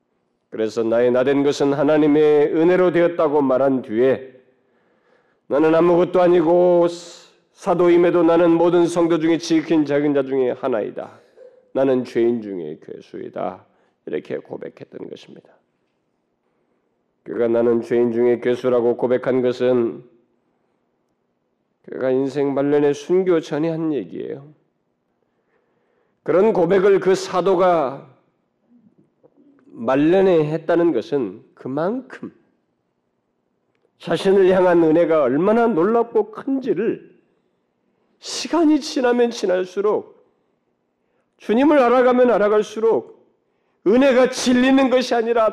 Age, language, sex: 40-59, Korean, male